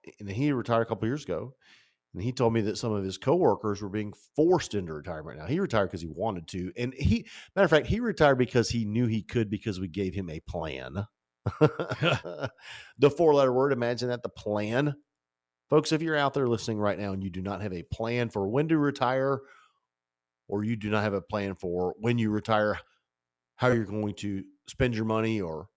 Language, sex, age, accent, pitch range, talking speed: English, male, 50-69, American, 95-130 Hz, 215 wpm